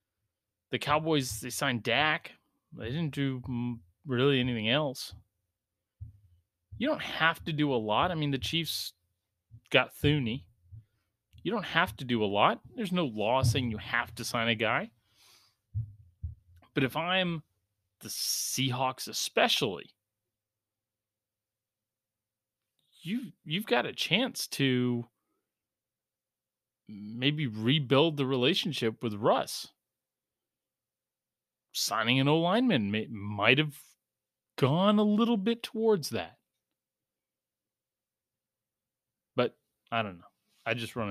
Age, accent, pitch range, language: 30-49, American, 105-135 Hz, English